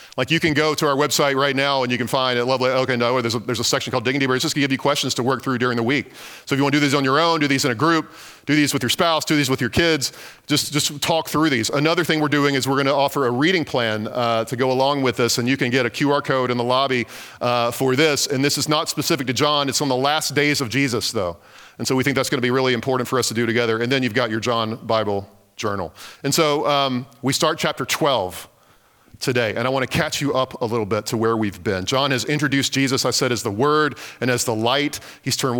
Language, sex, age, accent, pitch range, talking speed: English, male, 40-59, American, 130-155 Hz, 285 wpm